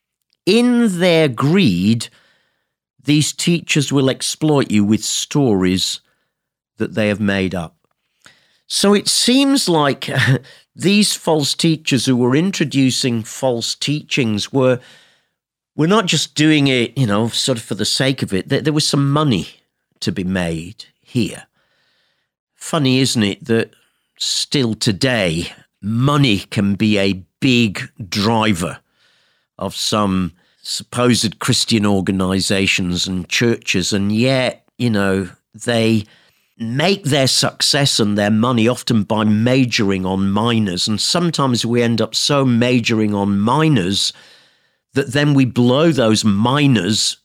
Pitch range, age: 105-145 Hz, 50-69